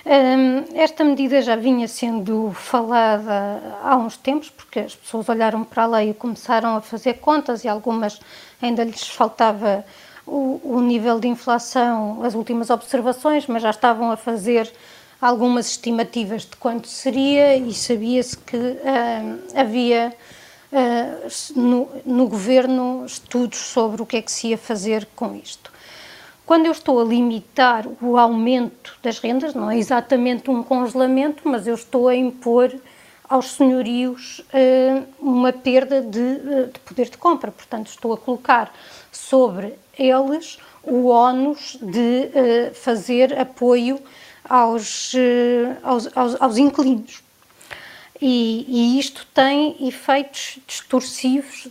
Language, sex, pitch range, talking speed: Portuguese, female, 235-265 Hz, 130 wpm